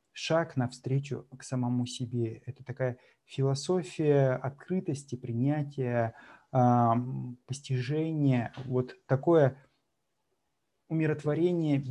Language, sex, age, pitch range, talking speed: Russian, male, 30-49, 125-150 Hz, 75 wpm